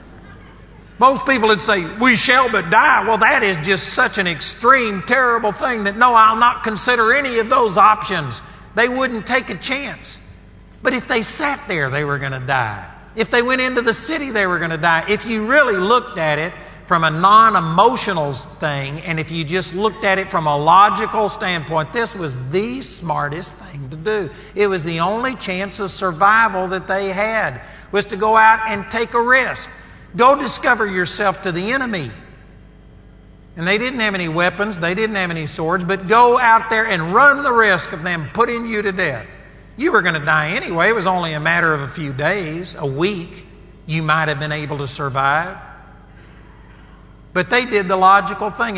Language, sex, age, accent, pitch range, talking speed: English, male, 50-69, American, 155-220 Hz, 195 wpm